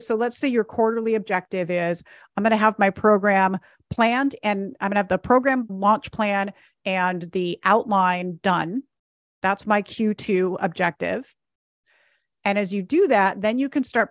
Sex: female